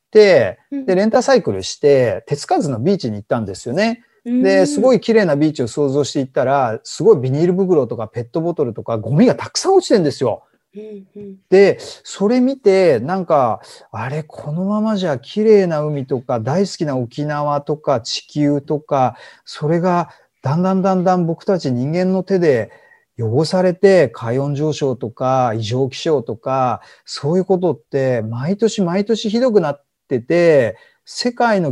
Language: Japanese